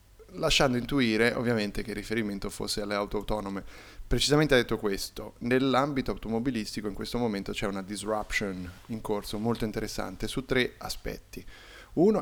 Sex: male